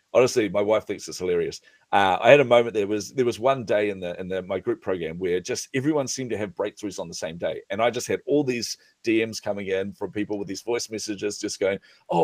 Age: 40-59